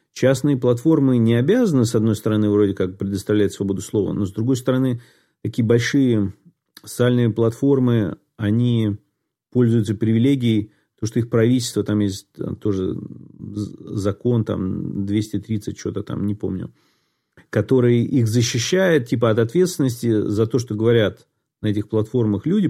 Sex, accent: male, native